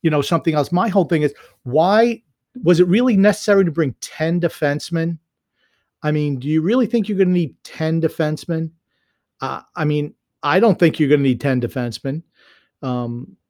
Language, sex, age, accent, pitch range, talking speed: English, male, 40-59, American, 145-200 Hz, 185 wpm